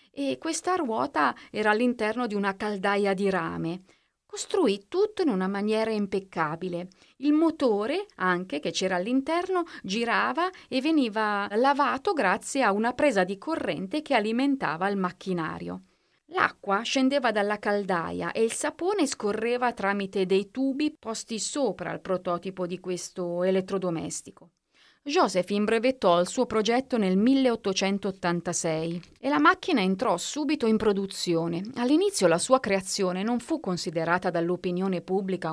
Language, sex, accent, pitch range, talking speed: Italian, female, native, 180-250 Hz, 130 wpm